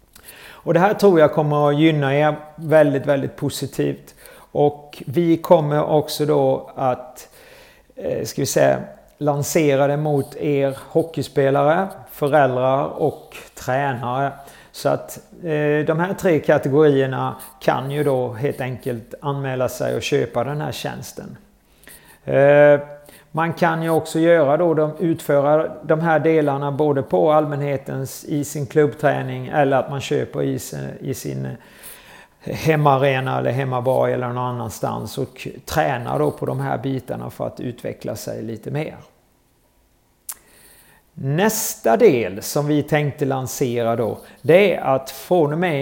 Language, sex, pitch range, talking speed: Swedish, male, 135-155 Hz, 135 wpm